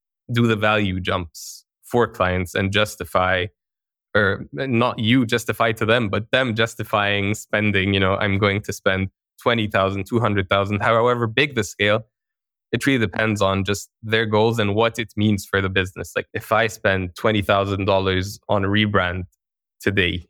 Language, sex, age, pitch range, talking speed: English, male, 20-39, 95-110 Hz, 155 wpm